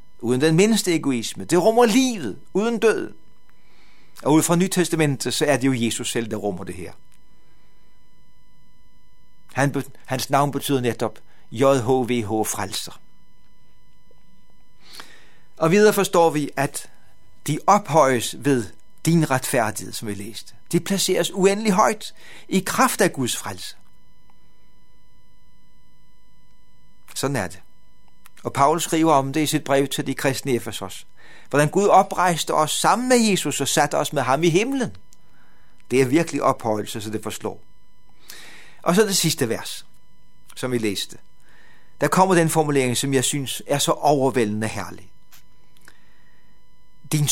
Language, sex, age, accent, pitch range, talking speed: Danish, male, 60-79, native, 120-170 Hz, 135 wpm